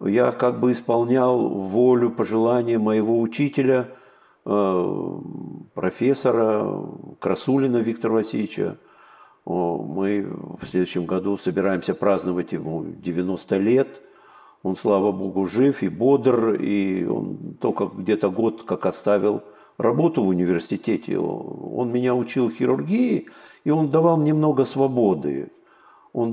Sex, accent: male, native